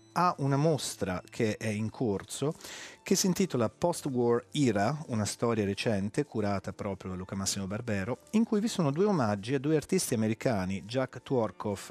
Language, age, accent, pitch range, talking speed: Italian, 40-59, native, 100-135 Hz, 165 wpm